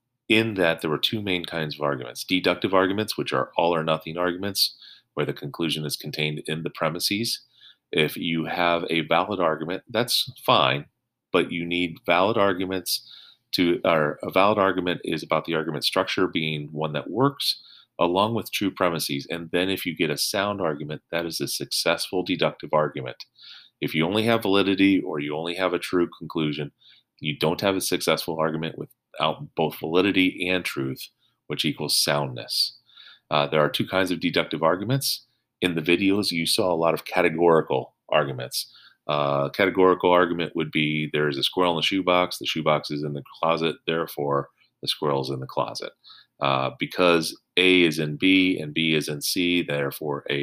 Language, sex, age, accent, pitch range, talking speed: English, male, 30-49, American, 75-95 Hz, 180 wpm